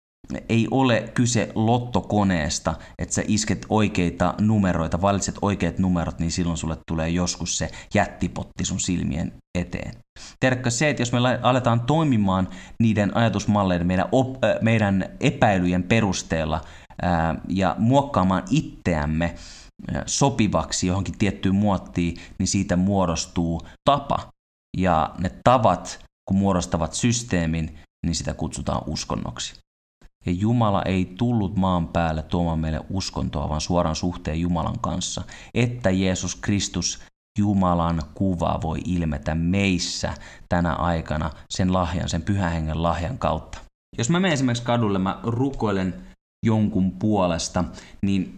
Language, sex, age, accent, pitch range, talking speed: Finnish, male, 30-49, native, 85-110 Hz, 125 wpm